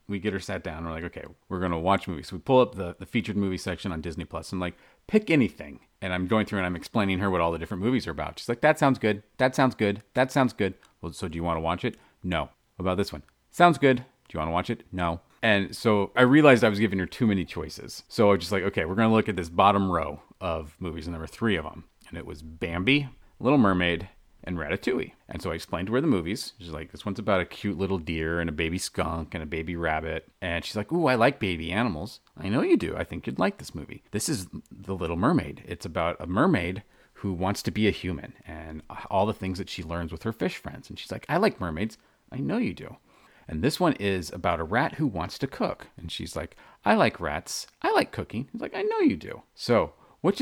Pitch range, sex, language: 85-110 Hz, male, English